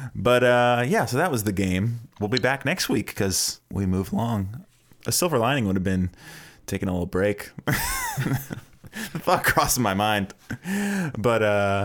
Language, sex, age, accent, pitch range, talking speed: English, male, 20-39, American, 95-125 Hz, 170 wpm